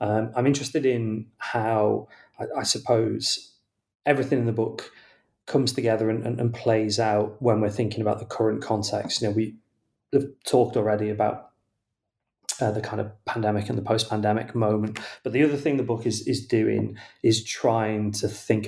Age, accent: 30-49, British